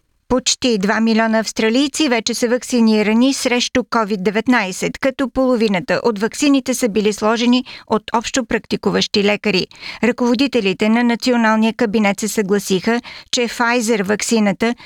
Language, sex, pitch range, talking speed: Bulgarian, female, 215-245 Hz, 115 wpm